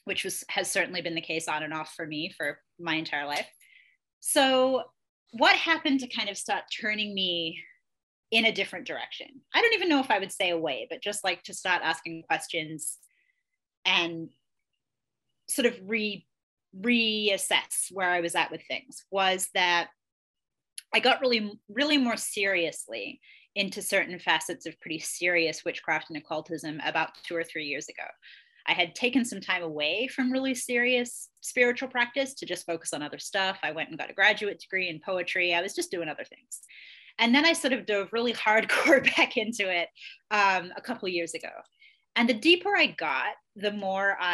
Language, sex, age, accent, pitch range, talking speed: English, female, 30-49, American, 170-255 Hz, 185 wpm